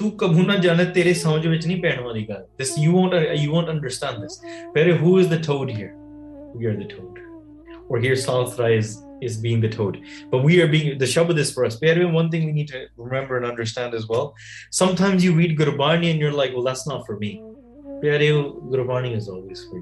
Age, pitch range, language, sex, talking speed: 20-39, 120-165 Hz, English, male, 180 wpm